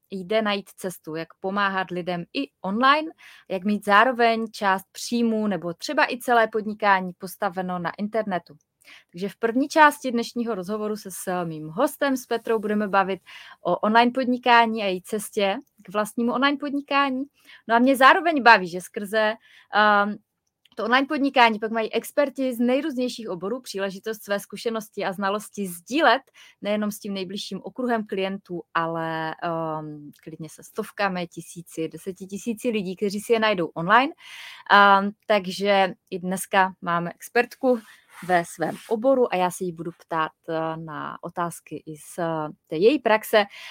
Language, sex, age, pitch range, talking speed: Czech, female, 20-39, 180-235 Hz, 150 wpm